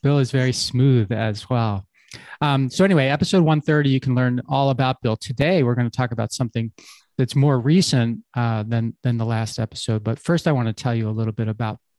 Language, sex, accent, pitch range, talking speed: English, male, American, 115-135 Hz, 225 wpm